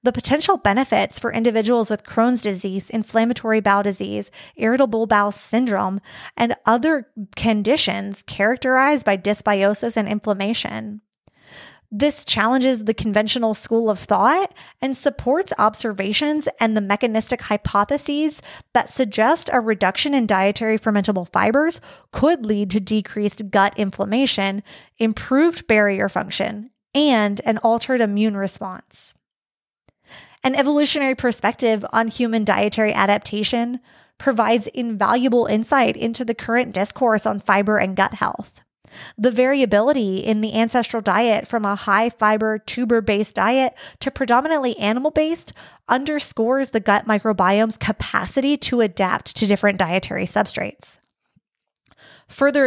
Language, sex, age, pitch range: English, female, 20-39, 205-250 Hz